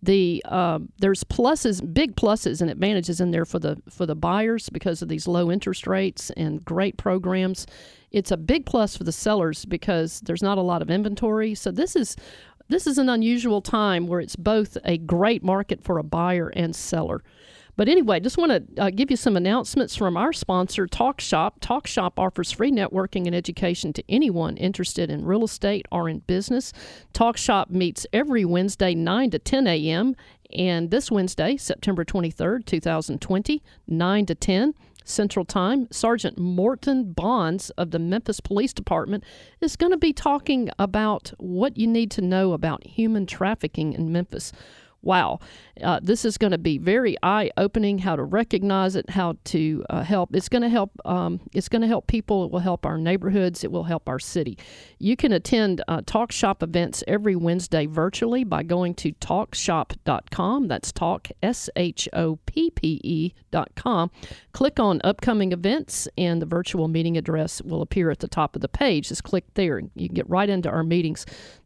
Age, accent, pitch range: 50-69, American, 175-220 Hz